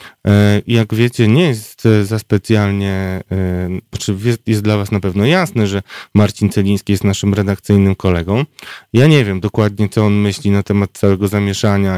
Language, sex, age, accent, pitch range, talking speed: Polish, male, 30-49, native, 95-110 Hz, 150 wpm